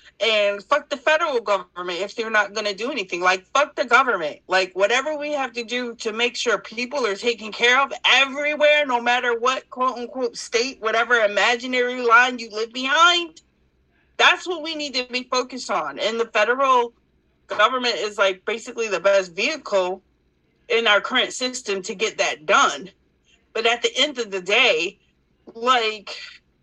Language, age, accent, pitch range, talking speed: English, 40-59, American, 200-260 Hz, 170 wpm